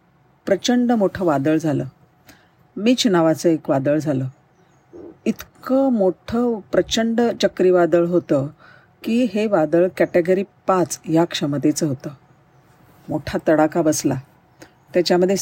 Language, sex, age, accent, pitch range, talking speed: Marathi, female, 50-69, native, 150-185 Hz, 100 wpm